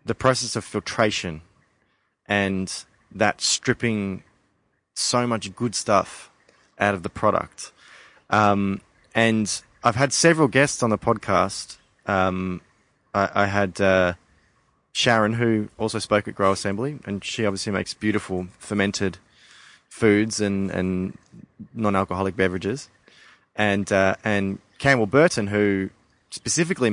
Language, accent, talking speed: English, Australian, 120 wpm